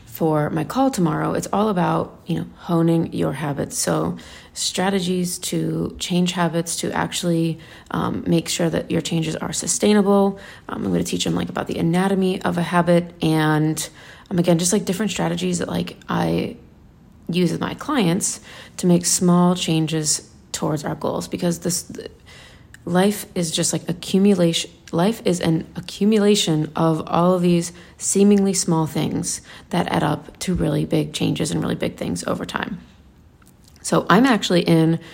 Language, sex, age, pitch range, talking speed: English, female, 30-49, 165-190 Hz, 165 wpm